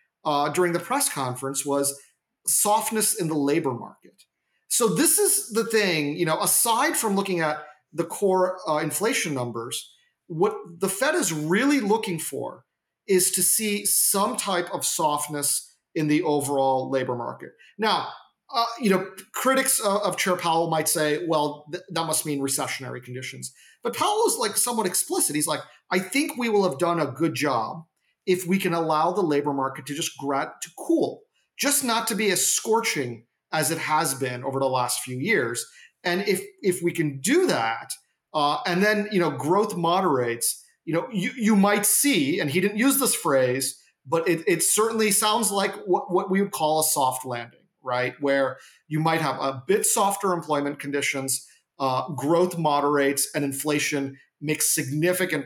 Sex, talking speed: male, 175 wpm